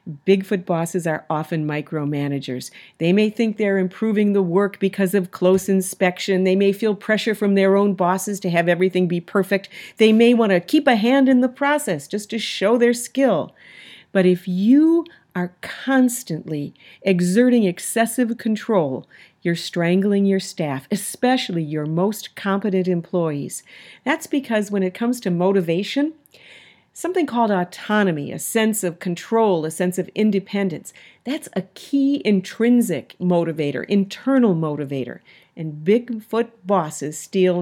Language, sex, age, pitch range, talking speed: English, female, 50-69, 170-220 Hz, 145 wpm